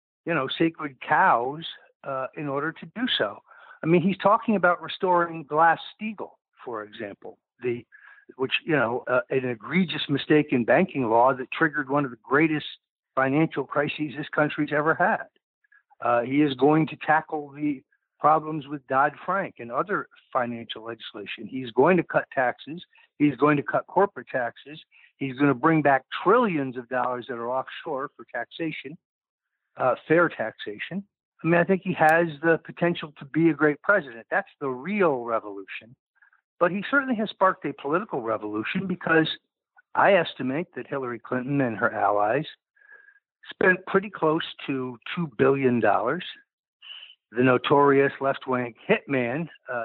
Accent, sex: American, male